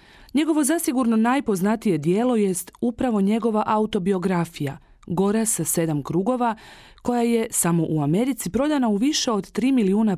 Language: Croatian